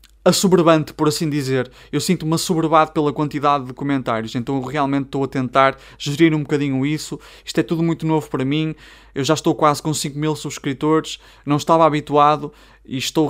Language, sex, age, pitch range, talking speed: Portuguese, male, 20-39, 140-175 Hz, 185 wpm